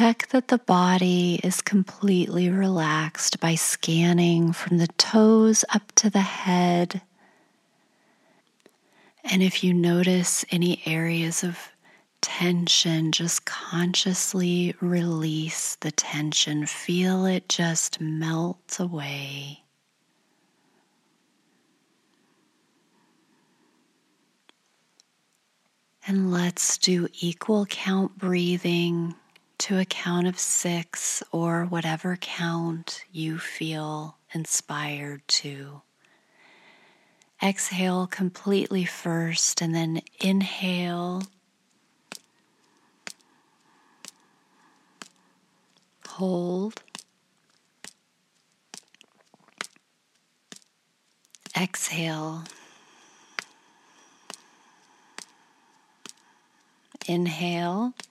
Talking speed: 65 wpm